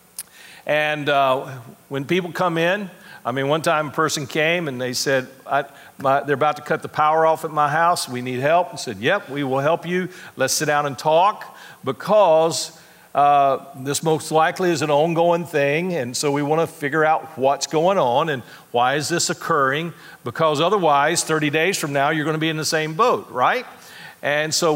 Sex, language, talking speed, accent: male, English, 200 wpm, American